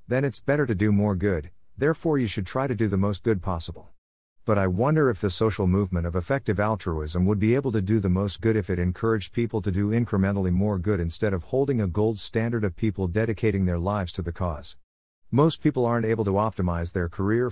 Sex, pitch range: male, 90-115 Hz